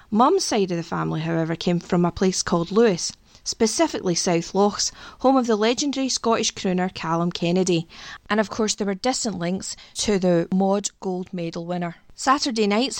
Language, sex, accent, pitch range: English, female, British, 180-225 Hz